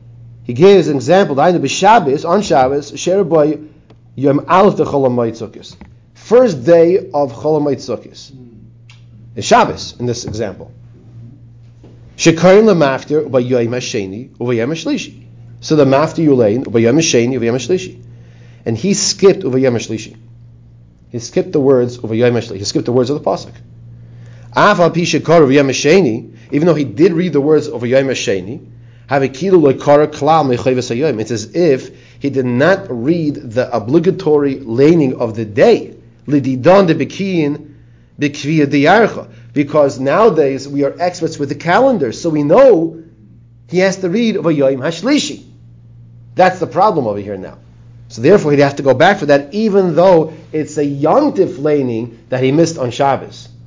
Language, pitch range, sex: English, 120-160 Hz, male